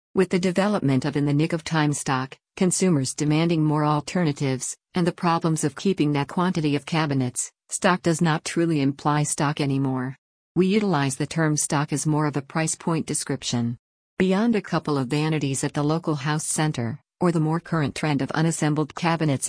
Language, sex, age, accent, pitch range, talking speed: English, female, 50-69, American, 140-165 Hz, 185 wpm